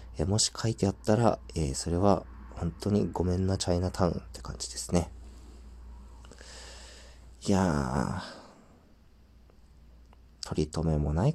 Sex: male